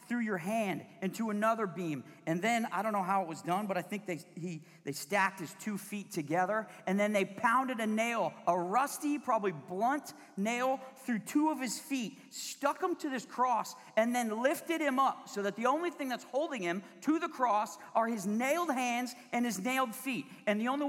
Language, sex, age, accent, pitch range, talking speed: English, male, 40-59, American, 215-285 Hz, 215 wpm